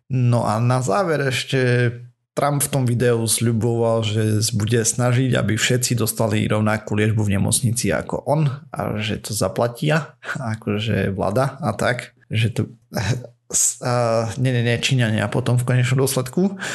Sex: male